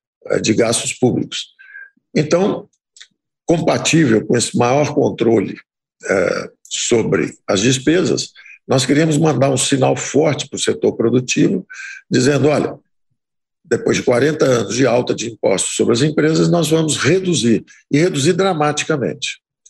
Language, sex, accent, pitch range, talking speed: Portuguese, male, Brazilian, 145-200 Hz, 130 wpm